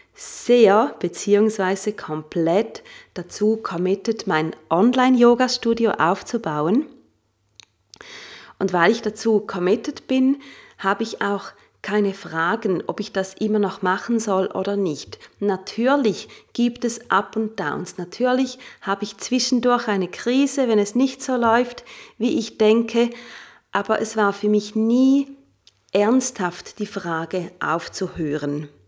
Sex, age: female, 30-49